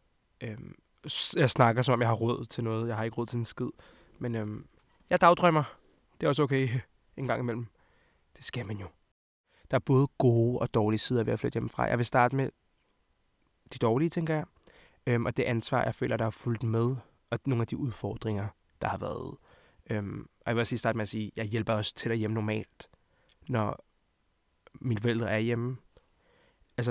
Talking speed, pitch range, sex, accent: 205 wpm, 115-135 Hz, male, native